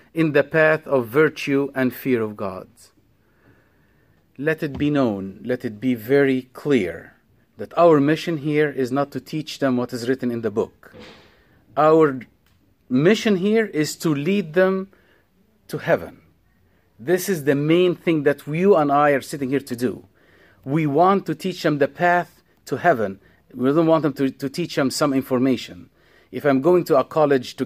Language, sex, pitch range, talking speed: English, male, 125-160 Hz, 180 wpm